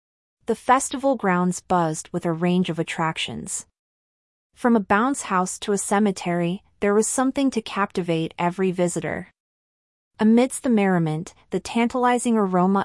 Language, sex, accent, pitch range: English, female, American, 170-215 Hz